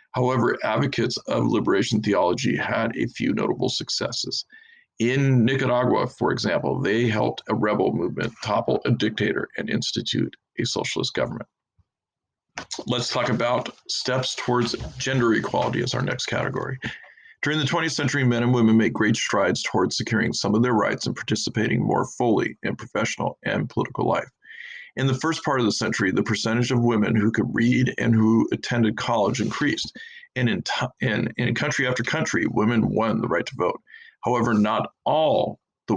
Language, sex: English, male